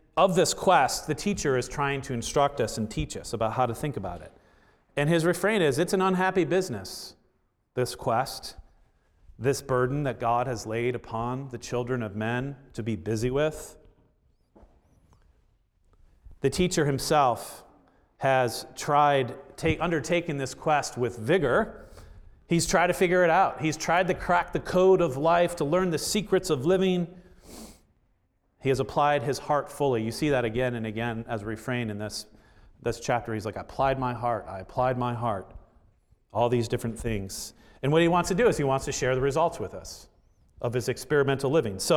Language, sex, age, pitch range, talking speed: English, male, 40-59, 115-155 Hz, 185 wpm